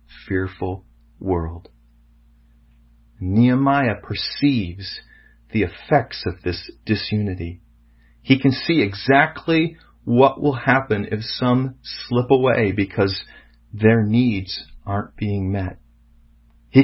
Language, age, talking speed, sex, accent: English, 40-59, 95 wpm, male, American